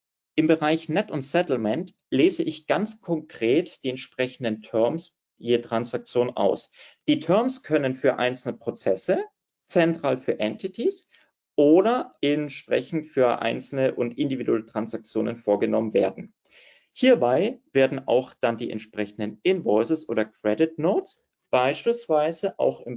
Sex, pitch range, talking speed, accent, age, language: male, 115-165 Hz, 120 wpm, German, 40-59, German